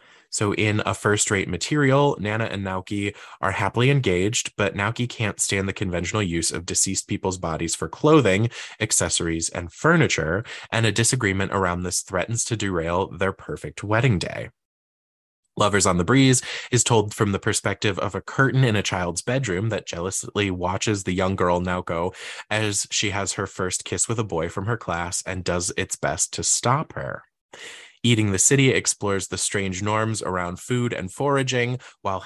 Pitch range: 90-115 Hz